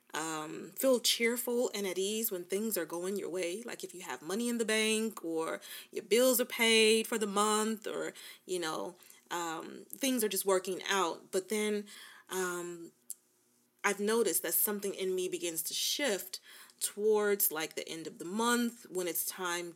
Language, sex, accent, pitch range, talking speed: English, female, American, 170-225 Hz, 180 wpm